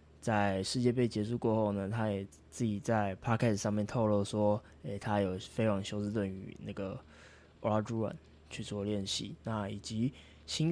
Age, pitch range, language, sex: 20-39, 95-110 Hz, Chinese, male